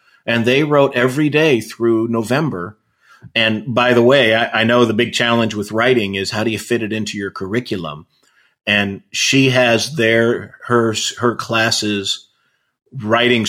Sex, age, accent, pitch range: male, 40-59, American, 105-120 Hz